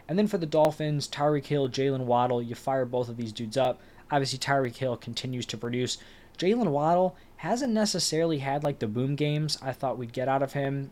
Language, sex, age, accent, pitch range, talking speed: English, male, 20-39, American, 120-145 Hz, 210 wpm